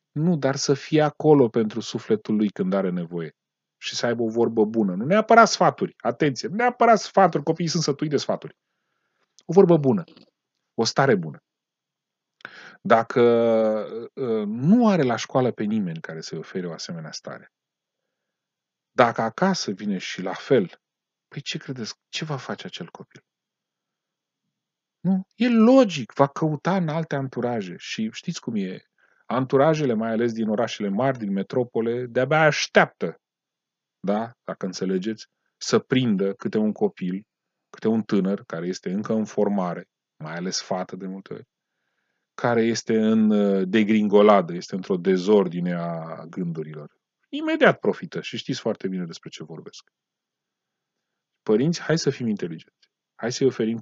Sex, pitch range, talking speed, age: male, 105-170 Hz, 145 wpm, 40-59